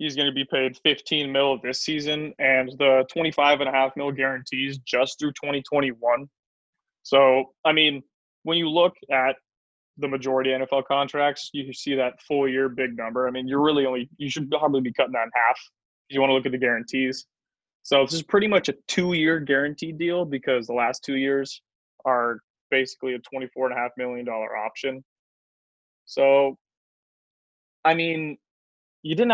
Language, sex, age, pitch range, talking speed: English, male, 20-39, 130-145 Hz, 180 wpm